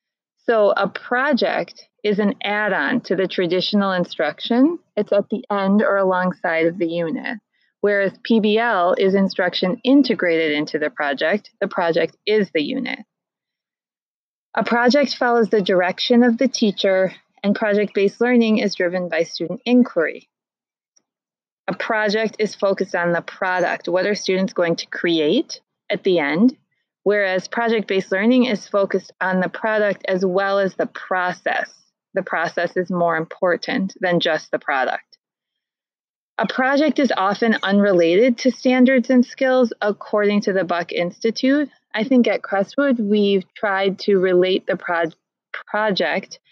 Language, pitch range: English, 180-230 Hz